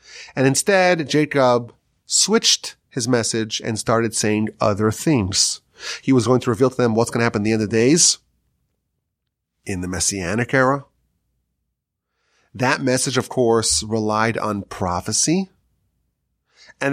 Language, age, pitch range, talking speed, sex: English, 30-49, 110-145 Hz, 140 wpm, male